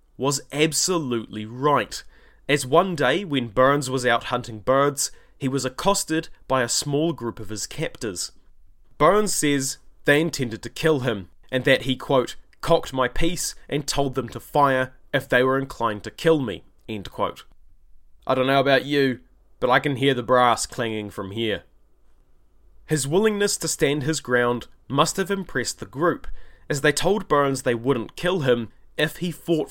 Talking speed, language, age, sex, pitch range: 175 wpm, English, 20-39, male, 120-155 Hz